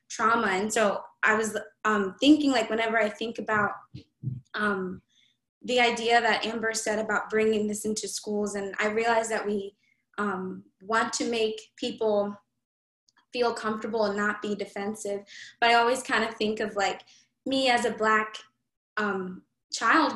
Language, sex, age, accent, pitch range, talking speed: English, female, 10-29, American, 205-235 Hz, 160 wpm